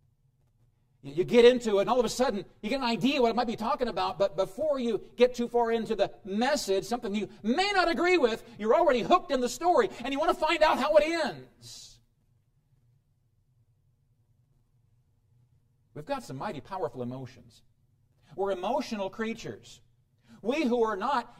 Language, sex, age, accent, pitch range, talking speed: English, male, 50-69, American, 120-195 Hz, 175 wpm